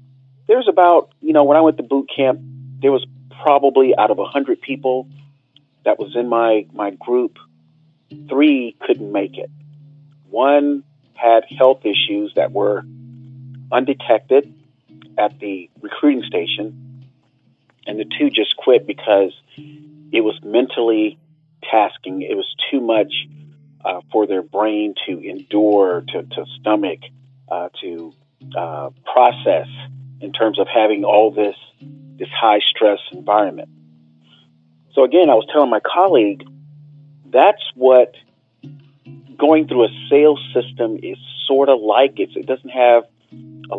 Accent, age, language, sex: American, 40-59, English, male